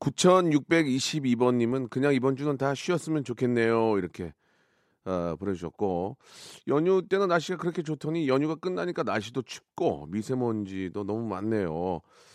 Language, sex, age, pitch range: Korean, male, 40-59, 110-150 Hz